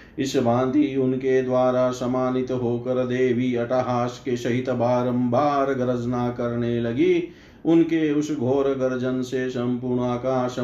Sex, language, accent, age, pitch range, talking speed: male, Hindi, native, 50-69, 125-155 Hz, 95 wpm